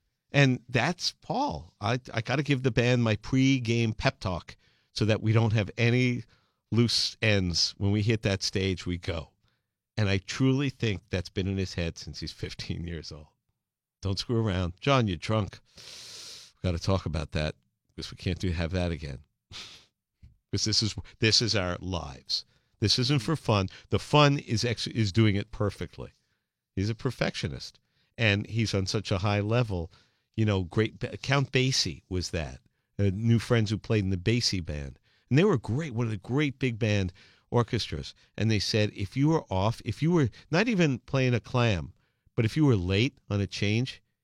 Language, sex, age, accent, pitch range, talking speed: English, male, 50-69, American, 95-120 Hz, 190 wpm